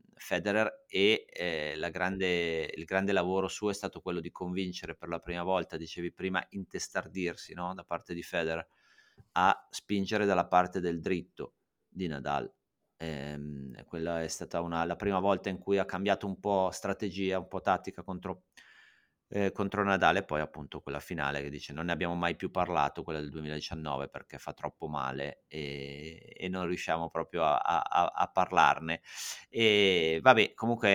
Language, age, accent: Italian, 30-49, native